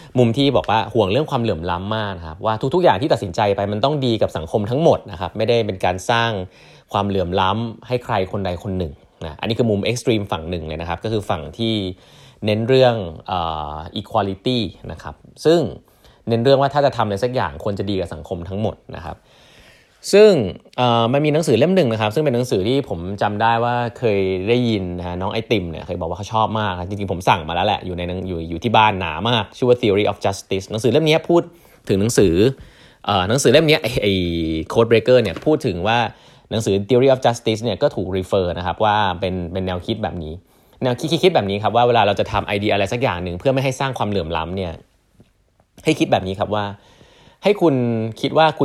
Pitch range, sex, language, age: 95-125 Hz, male, Thai, 30-49